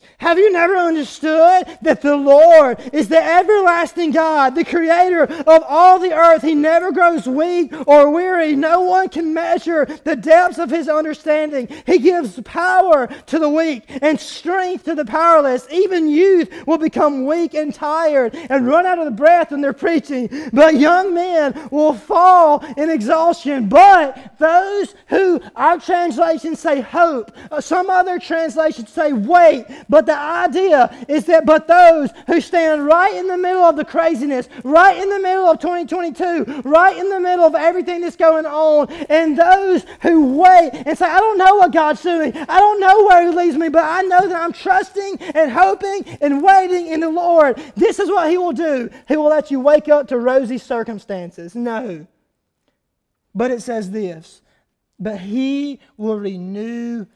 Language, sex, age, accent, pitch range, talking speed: English, male, 30-49, American, 285-345 Hz, 175 wpm